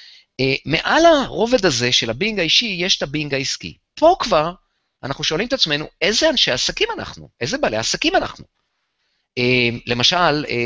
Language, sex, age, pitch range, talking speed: Hebrew, male, 30-49, 125-185 Hz, 160 wpm